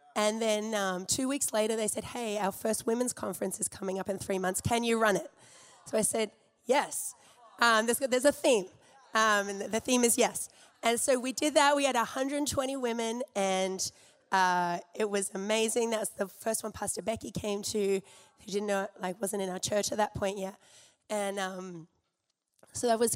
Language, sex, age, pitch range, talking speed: English, female, 20-39, 195-230 Hz, 200 wpm